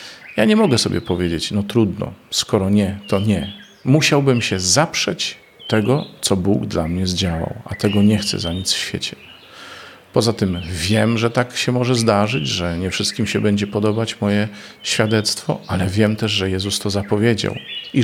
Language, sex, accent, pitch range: Polish, male, native, 100-115 Hz